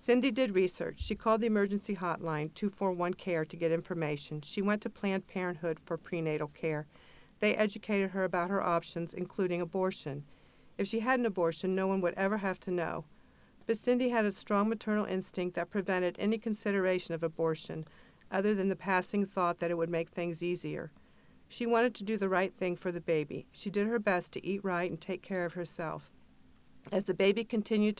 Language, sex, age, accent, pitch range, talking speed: English, female, 50-69, American, 170-205 Hz, 195 wpm